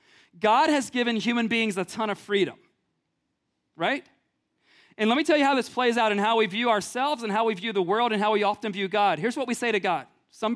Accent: American